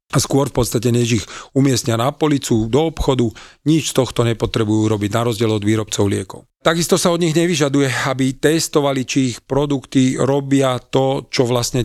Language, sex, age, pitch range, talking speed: Slovak, male, 40-59, 120-140 Hz, 175 wpm